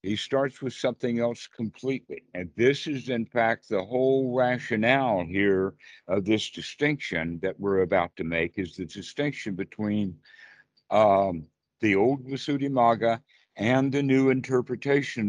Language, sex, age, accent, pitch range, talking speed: English, male, 60-79, American, 105-130 Hz, 140 wpm